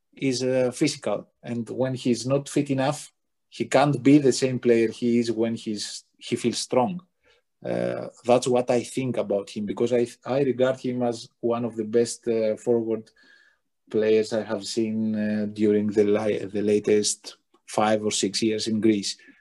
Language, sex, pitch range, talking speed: English, male, 110-130 Hz, 175 wpm